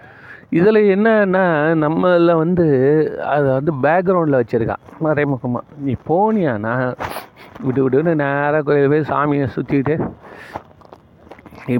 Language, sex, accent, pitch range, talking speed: Tamil, male, native, 135-170 Hz, 100 wpm